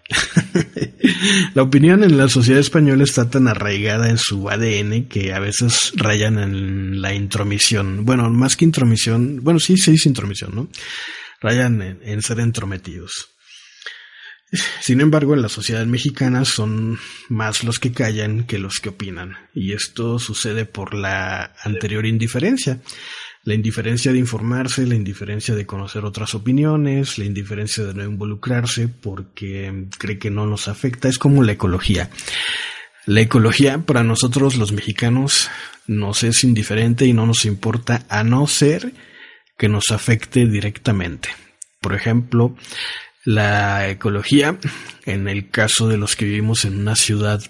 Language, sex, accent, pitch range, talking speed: Spanish, male, Mexican, 105-125 Hz, 145 wpm